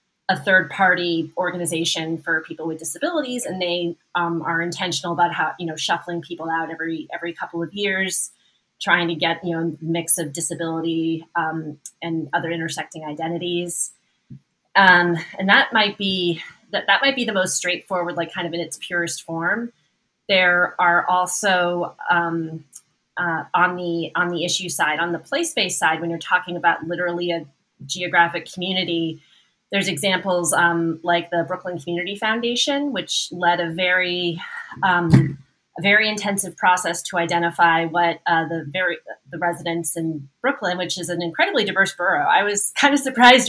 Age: 30-49